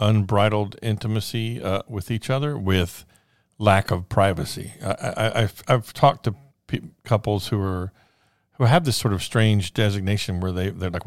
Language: English